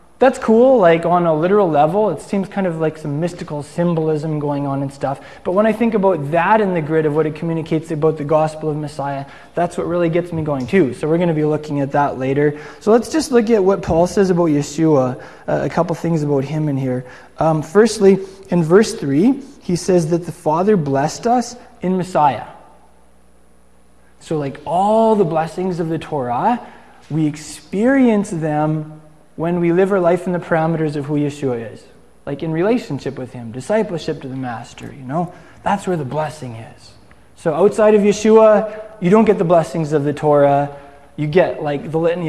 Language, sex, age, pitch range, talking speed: English, male, 20-39, 145-185 Hz, 200 wpm